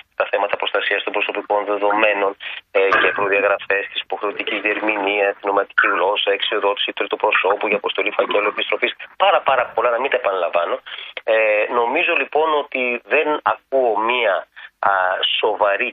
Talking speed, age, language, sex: 145 wpm, 30-49, Greek, male